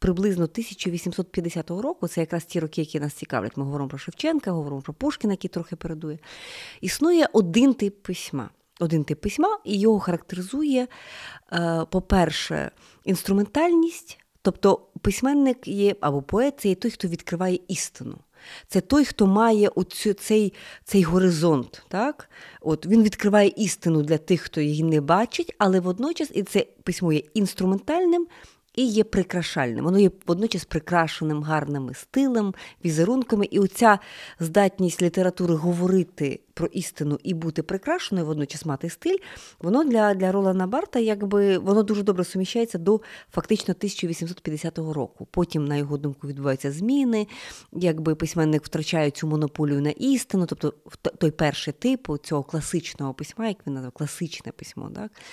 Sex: female